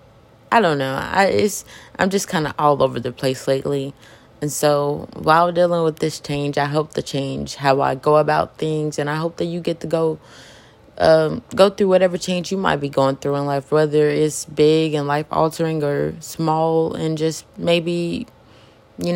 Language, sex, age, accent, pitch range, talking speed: English, female, 20-39, American, 140-160 Hz, 190 wpm